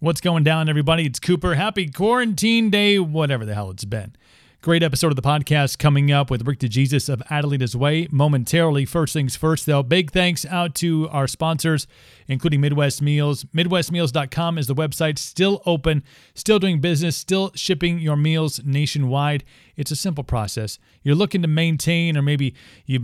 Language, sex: English, male